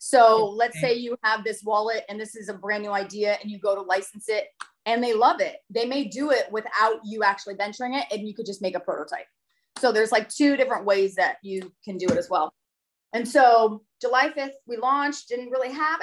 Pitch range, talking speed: 205-270 Hz, 230 wpm